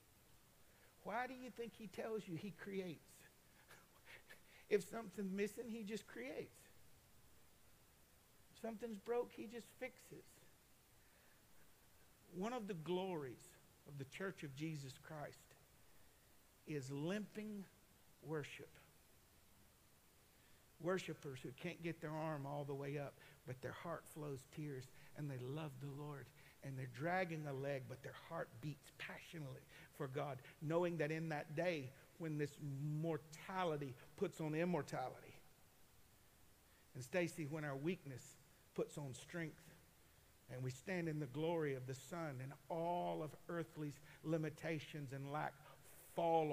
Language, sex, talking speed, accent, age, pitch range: English, male, 130 wpm, American, 60-79, 140-175 Hz